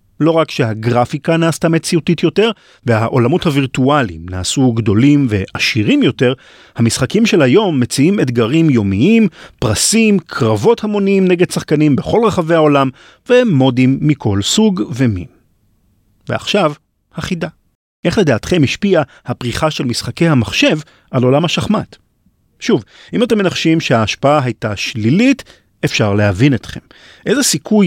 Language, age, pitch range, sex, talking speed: Hebrew, 40-59, 110-160 Hz, male, 115 wpm